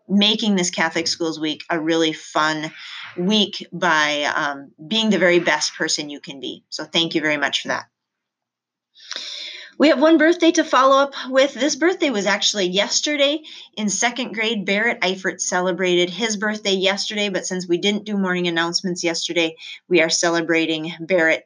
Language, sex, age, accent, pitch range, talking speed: English, female, 30-49, American, 170-245 Hz, 170 wpm